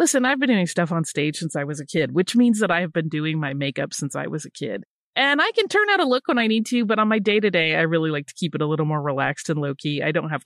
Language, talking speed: English, 340 wpm